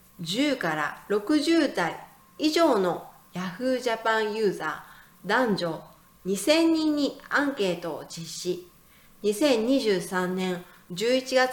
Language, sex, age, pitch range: Chinese, female, 40-59, 180-270 Hz